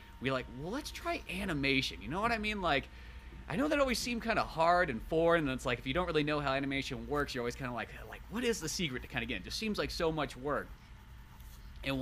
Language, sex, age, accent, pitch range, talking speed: English, male, 30-49, American, 115-160 Hz, 280 wpm